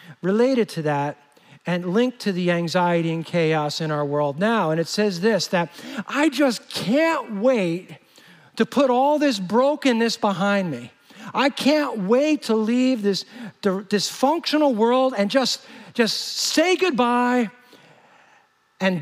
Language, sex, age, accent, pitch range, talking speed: English, male, 50-69, American, 185-230 Hz, 140 wpm